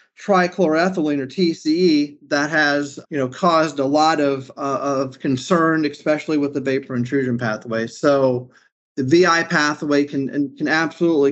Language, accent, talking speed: English, American, 145 wpm